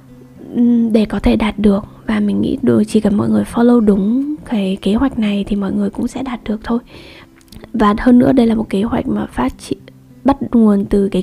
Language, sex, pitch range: Vietnamese, female, 205-235 Hz